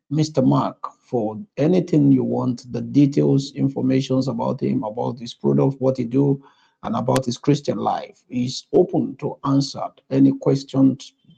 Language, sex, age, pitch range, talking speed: English, male, 50-69, 130-160 Hz, 150 wpm